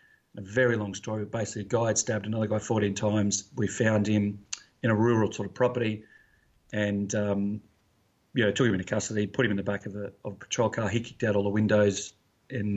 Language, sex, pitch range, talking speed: English, male, 105-120 Hz, 225 wpm